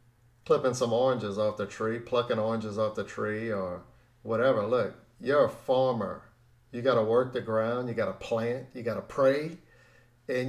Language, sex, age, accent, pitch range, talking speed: English, male, 50-69, American, 115-125 Hz, 175 wpm